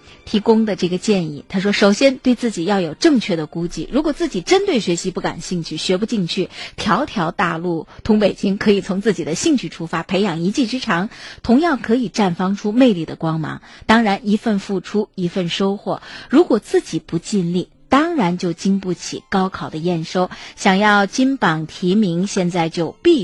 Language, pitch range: Chinese, 170-225 Hz